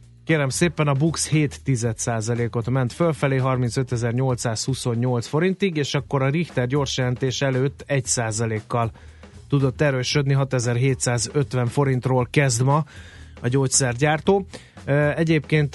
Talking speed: 100 wpm